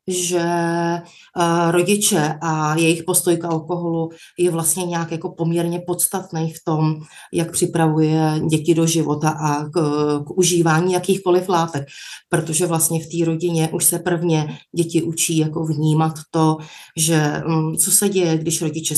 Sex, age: female, 30-49